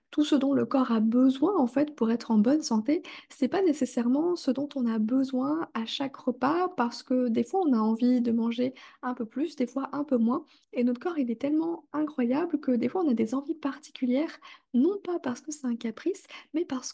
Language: French